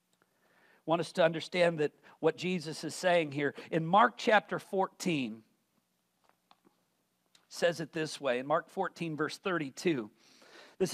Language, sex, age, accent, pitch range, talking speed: English, male, 50-69, American, 160-200 Hz, 130 wpm